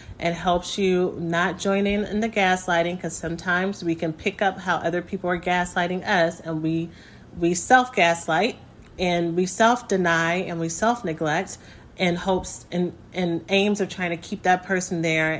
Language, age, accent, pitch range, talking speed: English, 30-49, American, 170-200 Hz, 170 wpm